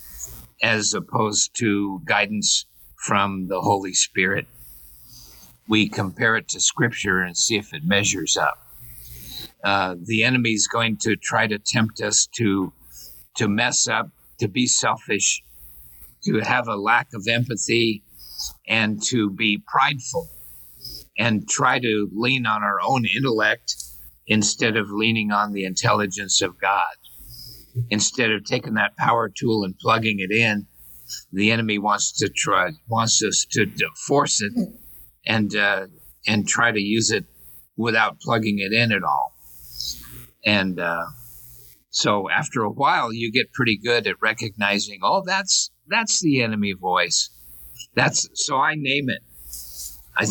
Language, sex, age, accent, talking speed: English, male, 50-69, American, 145 wpm